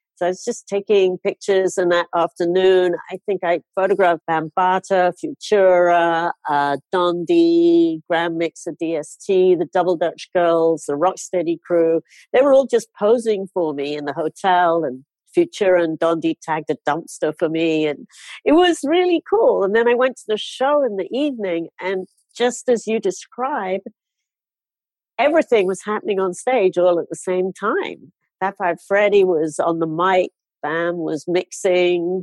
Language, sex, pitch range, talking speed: English, female, 165-210 Hz, 155 wpm